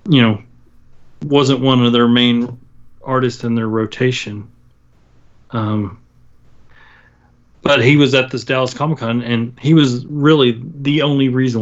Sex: male